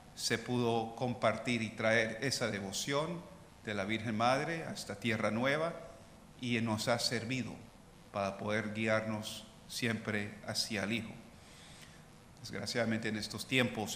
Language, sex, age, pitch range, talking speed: English, male, 40-59, 105-125 Hz, 130 wpm